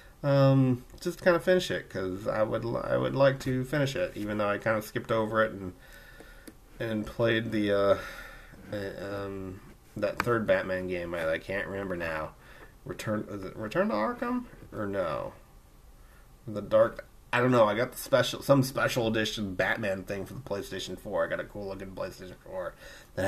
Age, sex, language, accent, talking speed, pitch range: 30-49, male, English, American, 195 wpm, 105-140 Hz